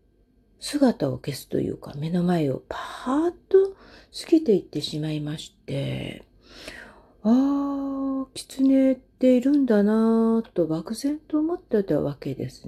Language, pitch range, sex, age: Japanese, 170-285 Hz, female, 40-59